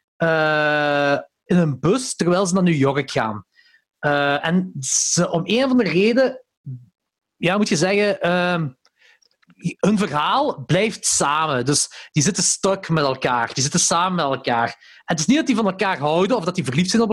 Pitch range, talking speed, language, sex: 145-200 Hz, 180 wpm, Dutch, male